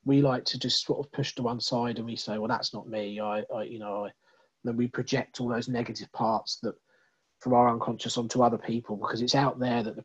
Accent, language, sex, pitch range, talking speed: British, English, male, 115-140 Hz, 255 wpm